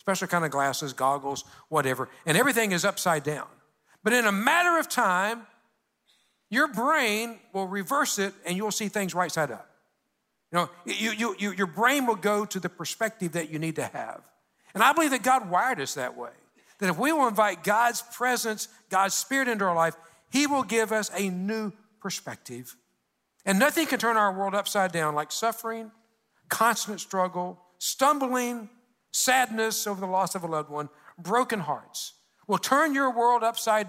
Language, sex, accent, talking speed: English, male, American, 175 wpm